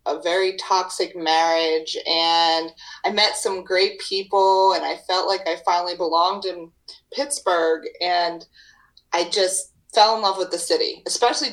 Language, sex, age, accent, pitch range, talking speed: English, female, 30-49, American, 170-275 Hz, 150 wpm